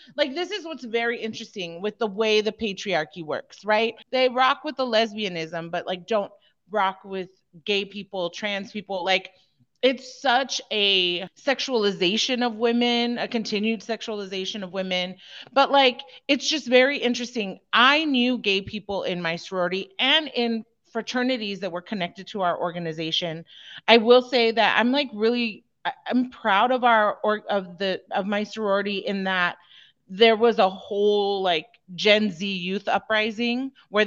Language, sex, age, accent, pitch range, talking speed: English, female, 30-49, American, 185-240 Hz, 160 wpm